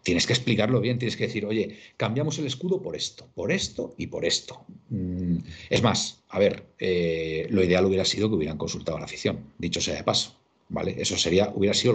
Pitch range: 95-130 Hz